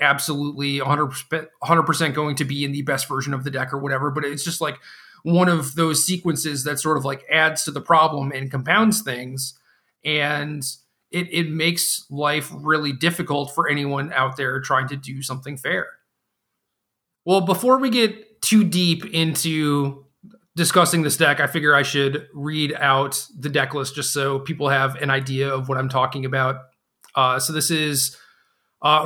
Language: English